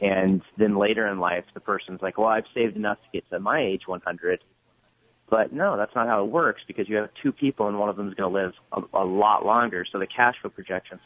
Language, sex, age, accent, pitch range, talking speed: English, male, 30-49, American, 95-110 Hz, 255 wpm